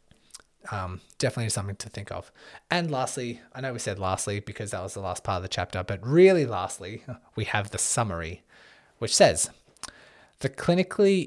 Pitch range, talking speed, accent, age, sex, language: 110-140 Hz, 175 wpm, Australian, 20-39, male, English